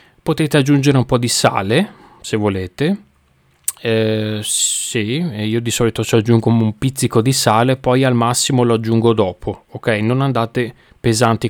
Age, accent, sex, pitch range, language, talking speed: 30-49, native, male, 110-130 Hz, Italian, 150 wpm